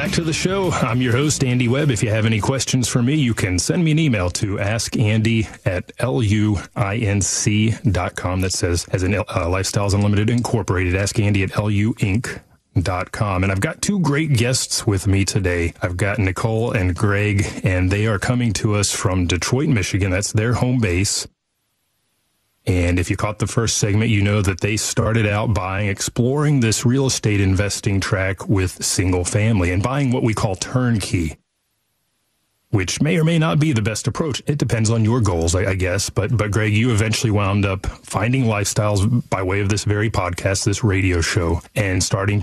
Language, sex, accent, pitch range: English, male, American, 95-120 Hz